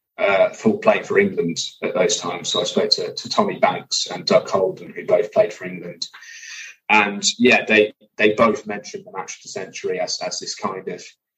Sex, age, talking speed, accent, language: male, 20-39, 205 wpm, British, English